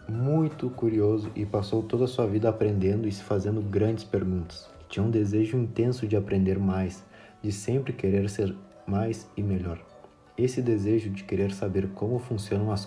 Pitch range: 95-110 Hz